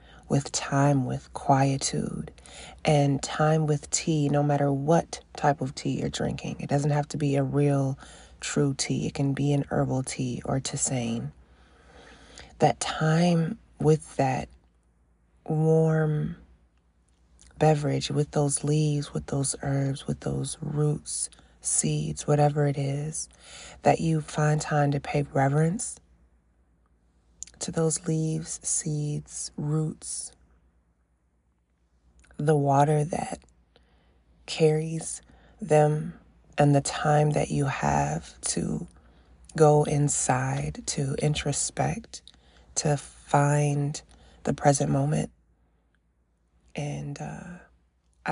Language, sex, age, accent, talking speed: English, female, 30-49, American, 110 wpm